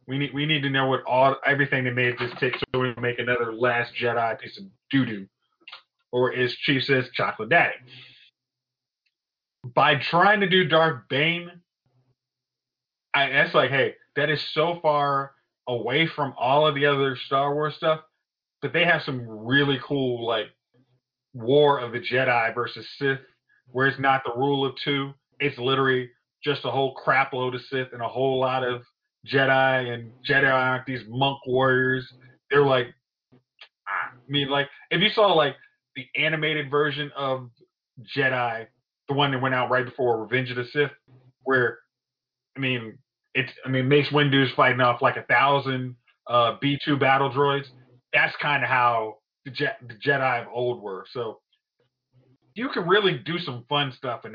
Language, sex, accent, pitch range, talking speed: English, male, American, 125-140 Hz, 170 wpm